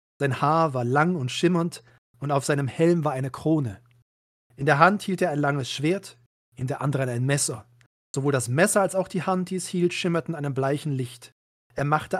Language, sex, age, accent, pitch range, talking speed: German, male, 40-59, German, 130-165 Hz, 205 wpm